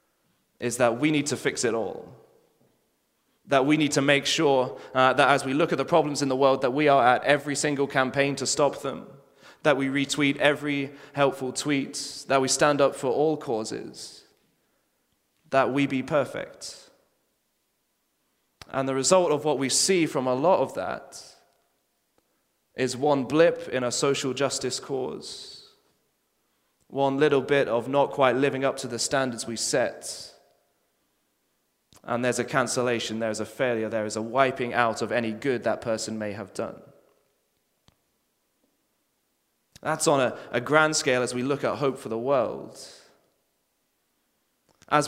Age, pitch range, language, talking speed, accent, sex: 20-39, 125-145 Hz, English, 160 wpm, British, male